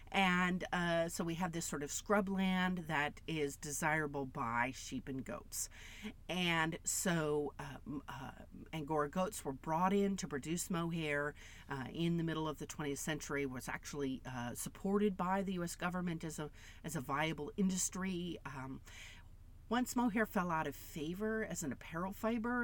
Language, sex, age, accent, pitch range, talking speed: English, female, 50-69, American, 140-185 Hz, 160 wpm